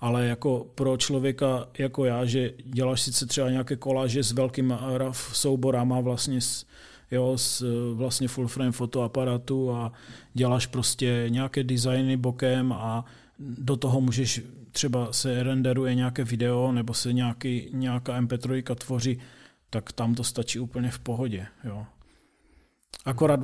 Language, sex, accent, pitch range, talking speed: Czech, male, native, 120-130 Hz, 135 wpm